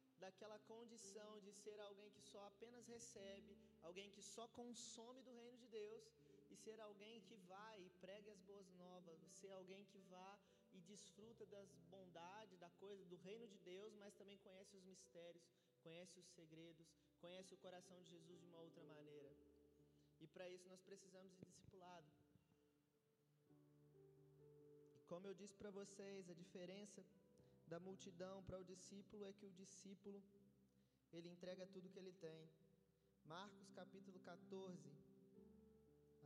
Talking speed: 150 wpm